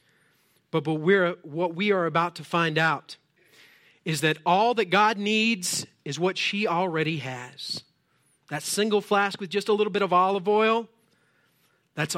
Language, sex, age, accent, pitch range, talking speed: English, male, 40-59, American, 160-210 Hz, 160 wpm